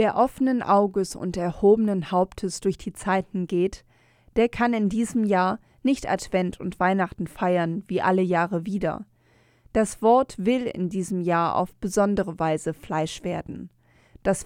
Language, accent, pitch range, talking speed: German, German, 170-220 Hz, 155 wpm